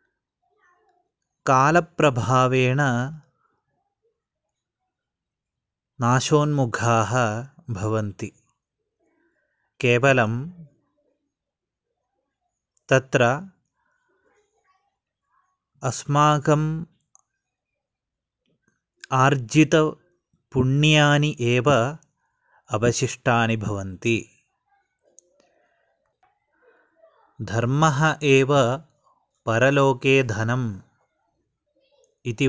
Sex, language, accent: male, Malayalam, native